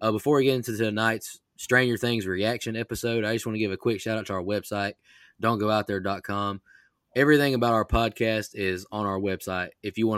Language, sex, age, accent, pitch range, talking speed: English, male, 20-39, American, 100-115 Hz, 195 wpm